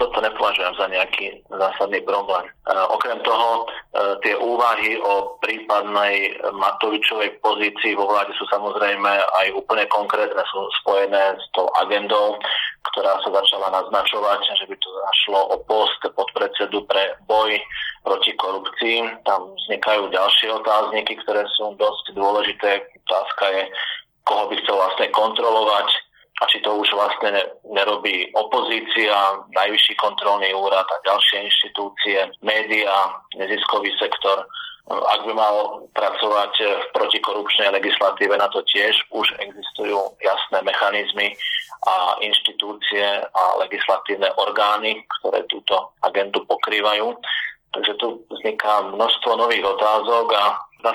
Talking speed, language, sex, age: 120 wpm, Slovak, male, 30-49